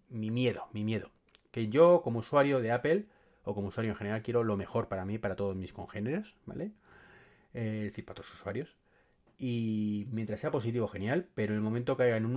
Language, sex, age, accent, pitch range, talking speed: Spanish, male, 30-49, Spanish, 100-120 Hz, 210 wpm